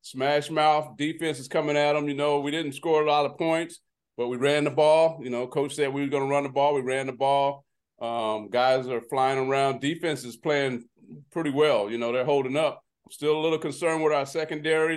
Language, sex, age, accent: English, male, 40-59, American